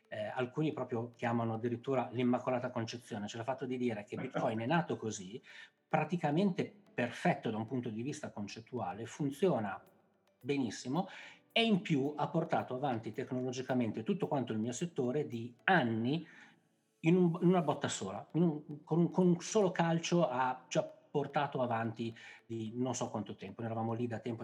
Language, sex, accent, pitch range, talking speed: Italian, male, native, 115-160 Hz, 165 wpm